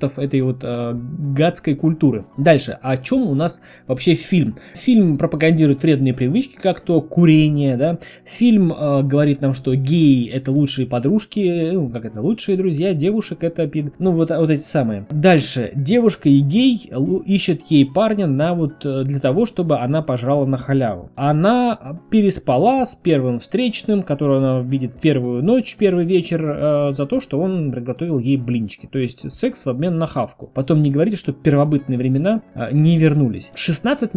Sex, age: male, 20-39